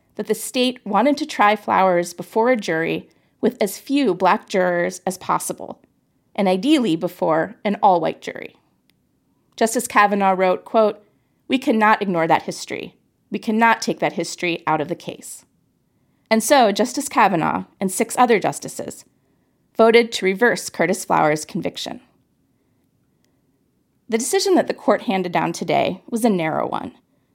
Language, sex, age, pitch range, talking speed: English, female, 30-49, 190-240 Hz, 145 wpm